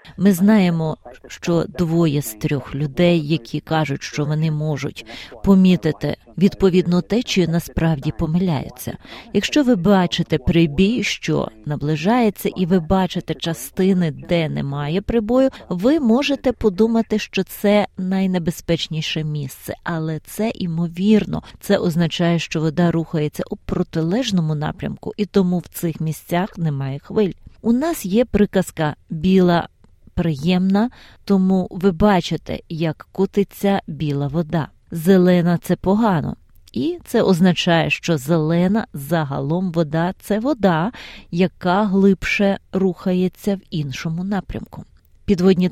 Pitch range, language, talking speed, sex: 160-200 Hz, Ukrainian, 115 wpm, female